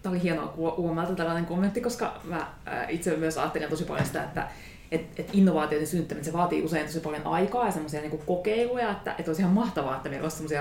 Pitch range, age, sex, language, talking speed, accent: 160-220 Hz, 30-49, female, Finnish, 210 wpm, native